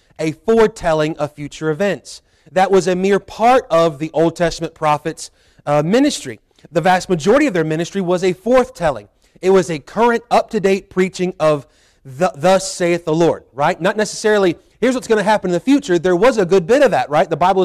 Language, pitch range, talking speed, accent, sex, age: English, 155-190 Hz, 195 wpm, American, male, 30-49